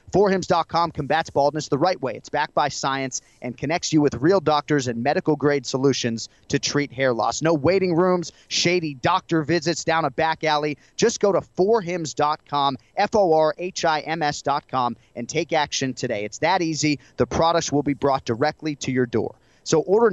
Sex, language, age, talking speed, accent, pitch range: male, English, 30-49, 165 wpm, American, 140-170 Hz